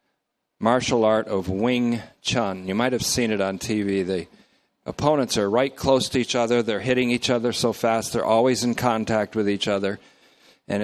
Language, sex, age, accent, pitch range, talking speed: English, male, 50-69, American, 100-125 Hz, 190 wpm